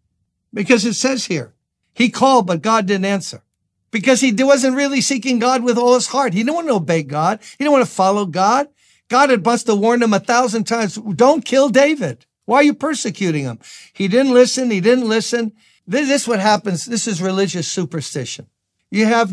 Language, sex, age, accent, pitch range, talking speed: English, male, 60-79, American, 190-250 Hz, 200 wpm